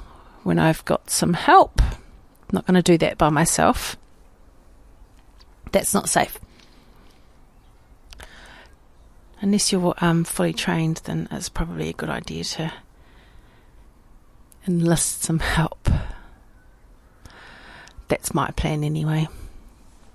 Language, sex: English, female